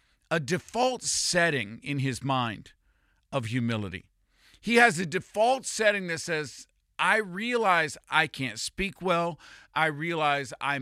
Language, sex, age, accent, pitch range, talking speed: English, male, 50-69, American, 135-190 Hz, 135 wpm